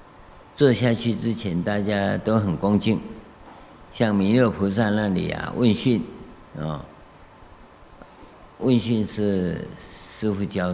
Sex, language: male, Chinese